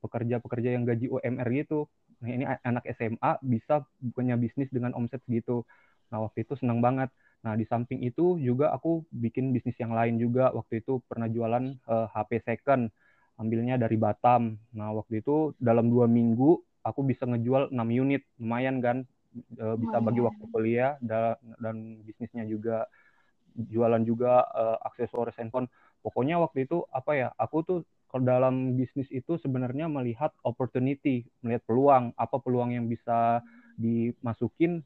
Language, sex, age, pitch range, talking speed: Indonesian, male, 20-39, 115-135 Hz, 150 wpm